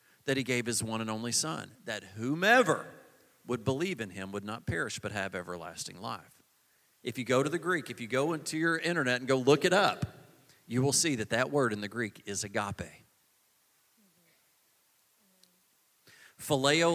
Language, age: English, 40-59